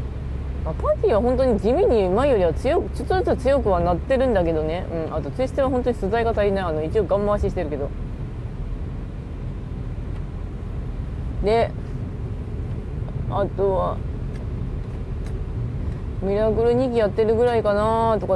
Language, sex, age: Japanese, female, 20-39